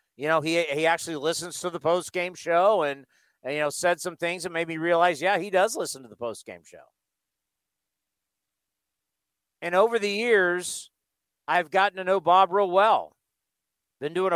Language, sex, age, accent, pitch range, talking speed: English, male, 50-69, American, 160-195 Hz, 175 wpm